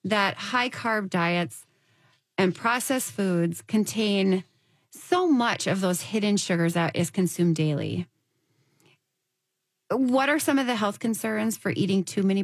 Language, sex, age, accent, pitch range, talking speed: English, female, 30-49, American, 170-235 Hz, 135 wpm